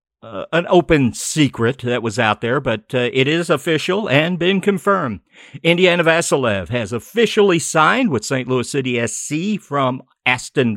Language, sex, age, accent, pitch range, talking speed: English, male, 50-69, American, 110-150 Hz, 155 wpm